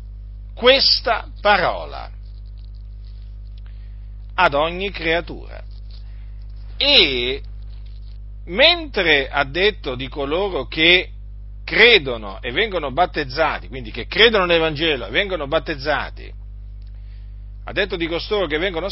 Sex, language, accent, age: male, Italian, native, 50-69